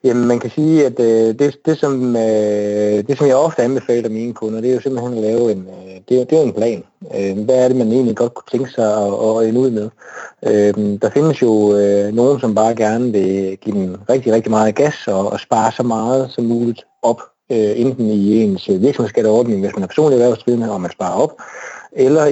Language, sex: Danish, male